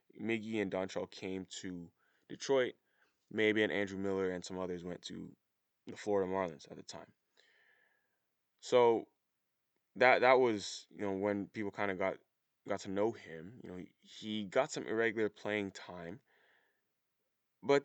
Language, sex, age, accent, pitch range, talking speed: English, male, 20-39, American, 95-115 Hz, 150 wpm